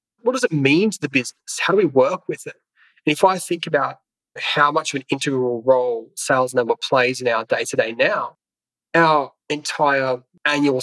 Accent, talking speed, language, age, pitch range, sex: Australian, 190 wpm, English, 20-39, 125-150 Hz, male